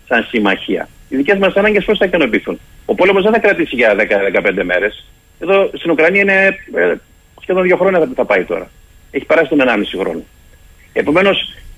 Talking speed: 175 wpm